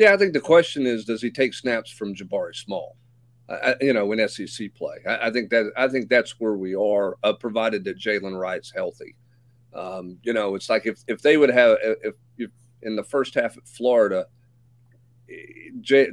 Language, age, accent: English, 40-59, American